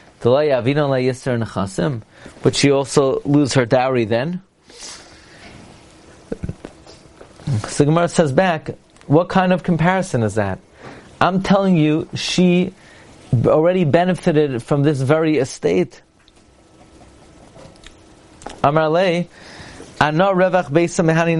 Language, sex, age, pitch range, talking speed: English, male, 30-49, 125-175 Hz, 75 wpm